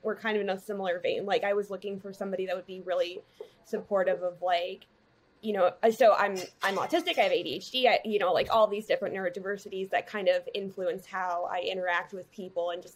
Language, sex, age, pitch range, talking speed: English, female, 20-39, 200-255 Hz, 220 wpm